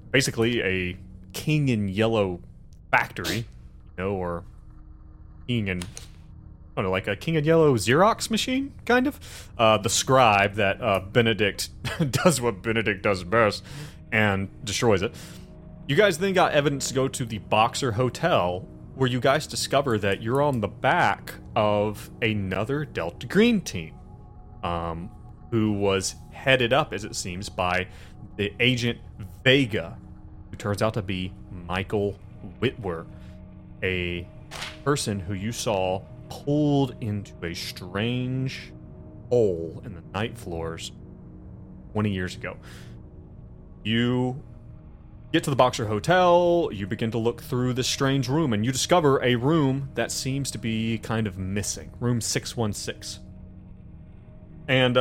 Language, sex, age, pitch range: English, male, 30-49, 95-130 Hz